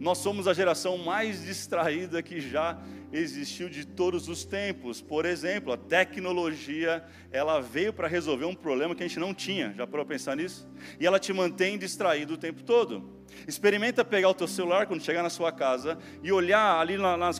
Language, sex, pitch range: Portuguese, male, 150-200 Hz